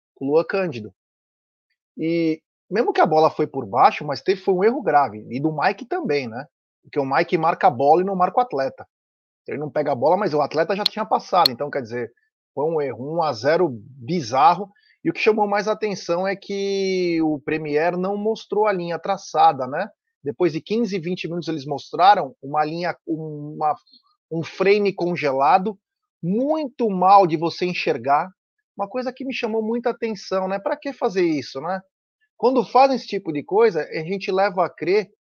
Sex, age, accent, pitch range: male, 30-49, Brazilian, 160-220 Hz